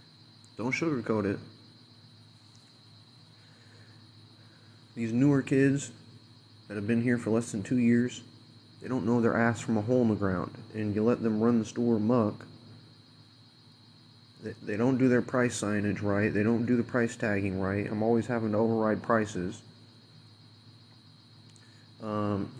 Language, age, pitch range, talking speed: English, 30-49, 115-125 Hz, 150 wpm